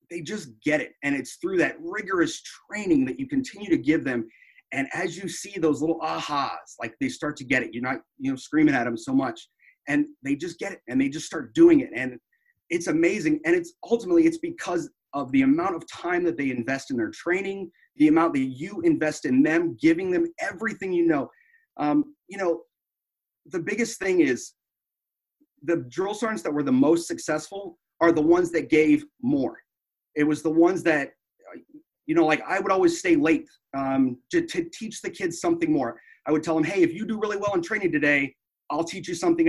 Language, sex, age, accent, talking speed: English, male, 30-49, American, 215 wpm